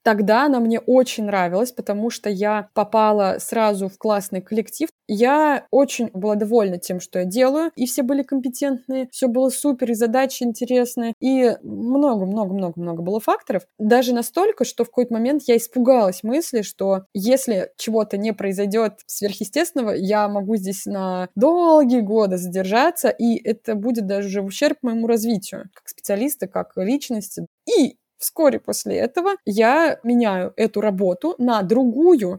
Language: Russian